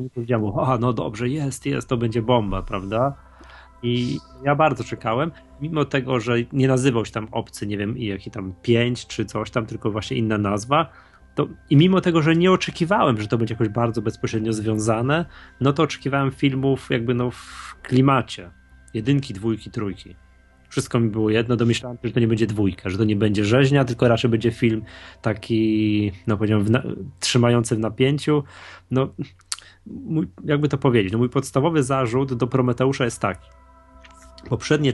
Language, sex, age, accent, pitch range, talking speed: Polish, male, 20-39, native, 110-135 Hz, 175 wpm